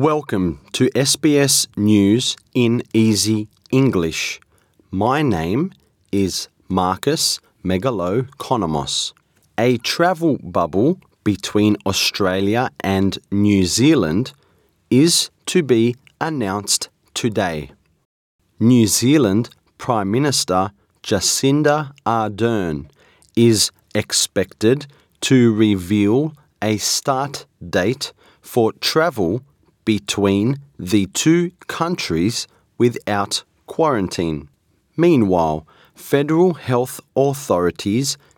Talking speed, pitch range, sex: 80 wpm, 100-140 Hz, male